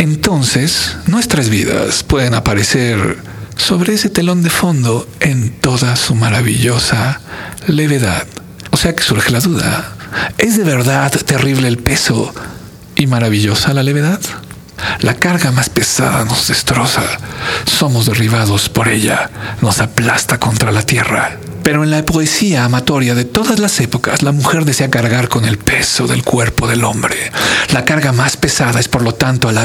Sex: male